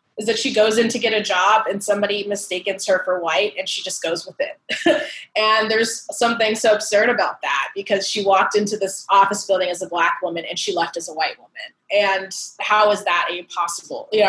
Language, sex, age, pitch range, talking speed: English, female, 20-39, 185-225 Hz, 220 wpm